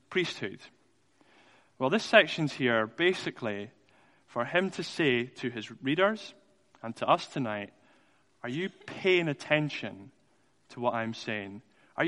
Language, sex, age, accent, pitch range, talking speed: English, male, 20-39, British, 120-160 Hz, 130 wpm